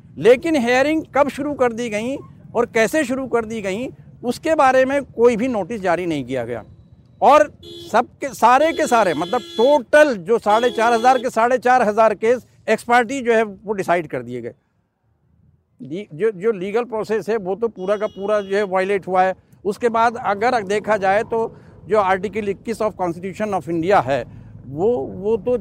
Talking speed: 185 wpm